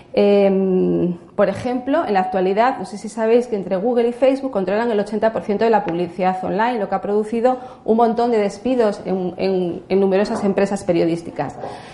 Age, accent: 40-59, Spanish